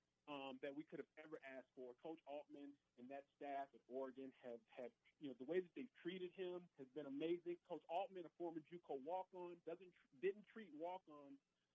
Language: English